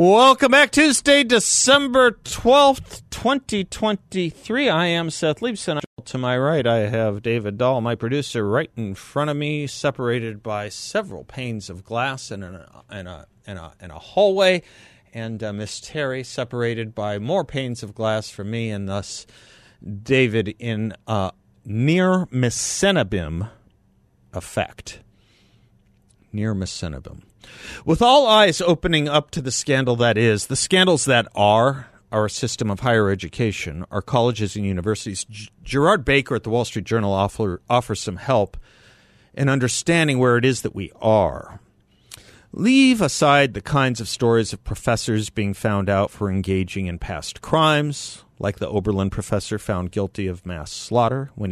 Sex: male